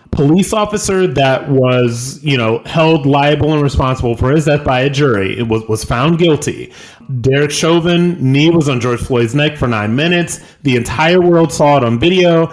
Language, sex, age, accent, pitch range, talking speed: English, male, 30-49, American, 125-170 Hz, 185 wpm